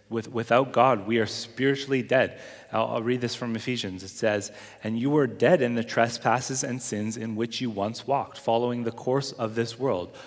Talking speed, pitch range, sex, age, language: 195 wpm, 100-125 Hz, male, 30-49, English